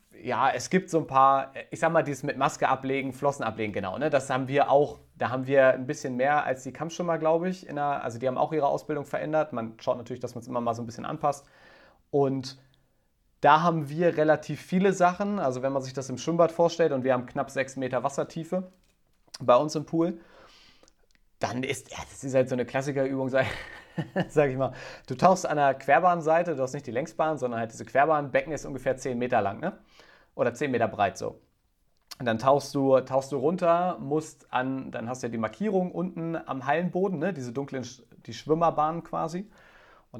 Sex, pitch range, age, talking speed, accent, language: male, 125-155 Hz, 30-49, 210 wpm, German, German